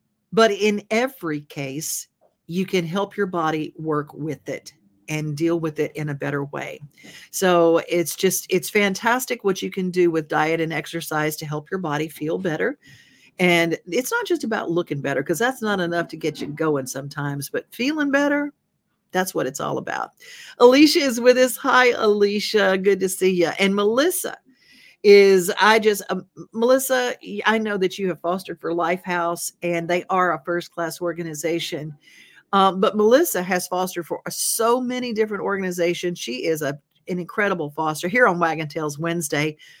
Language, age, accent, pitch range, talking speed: English, 50-69, American, 160-210 Hz, 175 wpm